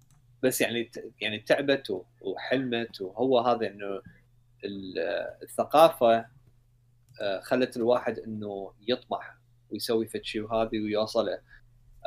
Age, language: 30-49, Arabic